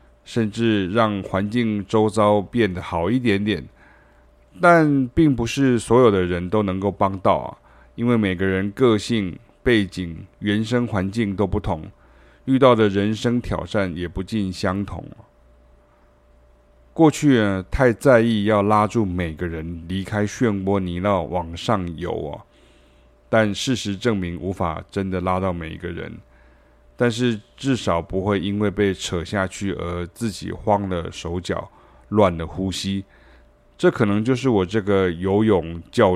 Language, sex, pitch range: Chinese, male, 85-110 Hz